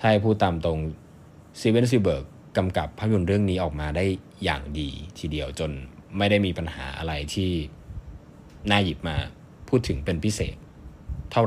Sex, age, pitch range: male, 20-39, 80-105 Hz